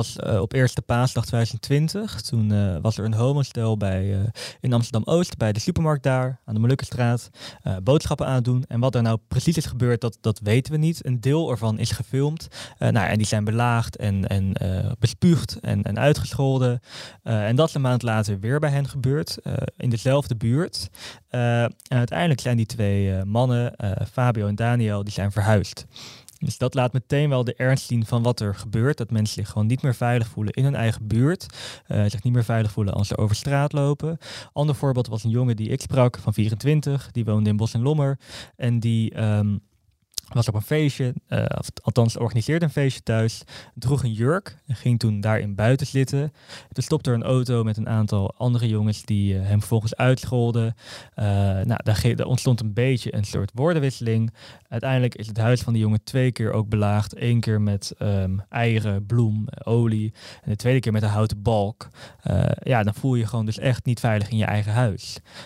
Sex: male